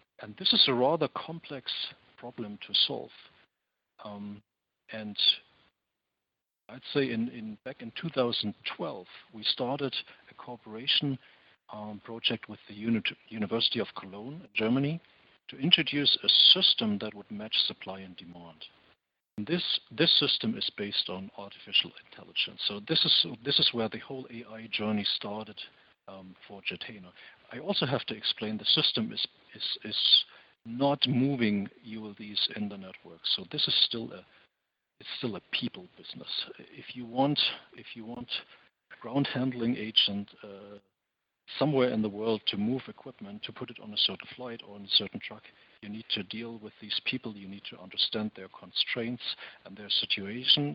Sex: male